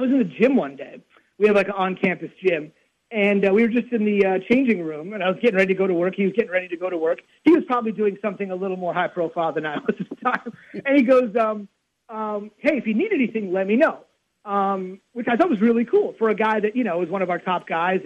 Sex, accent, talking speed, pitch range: male, American, 290 wpm, 185-240 Hz